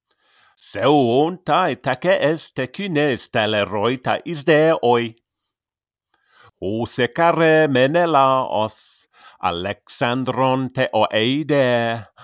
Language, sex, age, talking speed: English, male, 50-69, 70 wpm